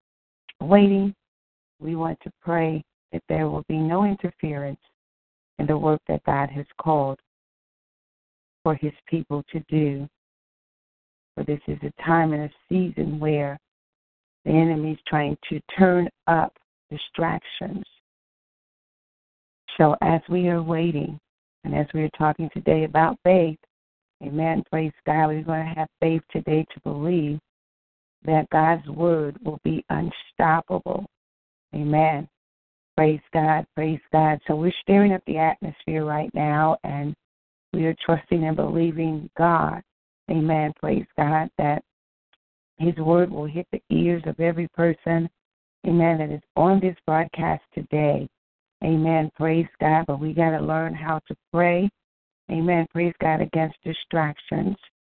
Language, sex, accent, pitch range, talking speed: English, female, American, 150-165 Hz, 135 wpm